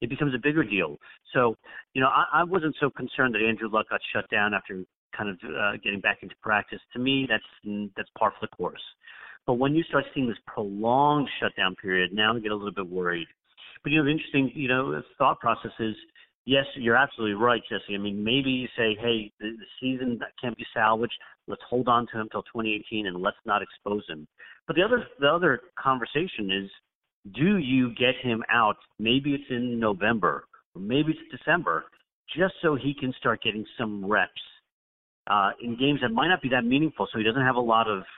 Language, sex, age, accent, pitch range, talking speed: English, male, 40-59, American, 100-130 Hz, 210 wpm